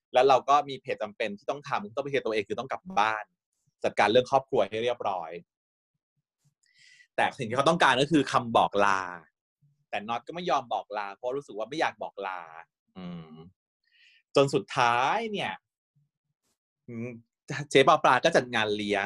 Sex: male